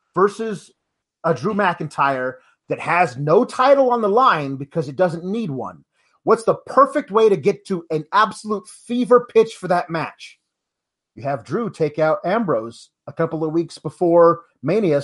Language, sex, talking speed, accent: English, male, 170 wpm, American